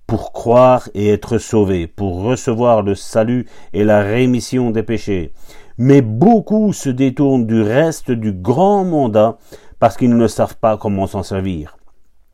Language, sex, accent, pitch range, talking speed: French, male, French, 105-140 Hz, 150 wpm